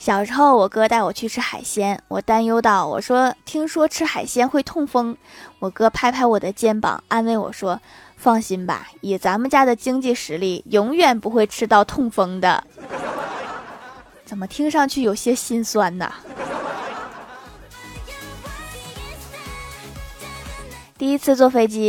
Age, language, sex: 20-39, Chinese, female